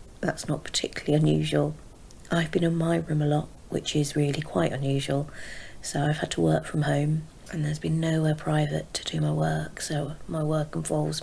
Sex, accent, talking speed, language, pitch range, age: female, British, 190 wpm, English, 145-160 Hz, 30-49